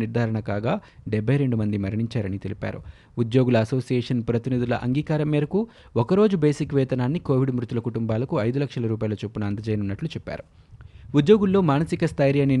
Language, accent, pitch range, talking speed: Telugu, native, 115-145 Hz, 120 wpm